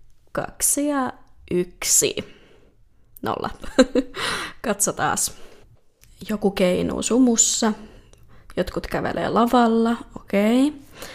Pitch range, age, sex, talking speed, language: 185-255 Hz, 20-39, female, 65 wpm, Finnish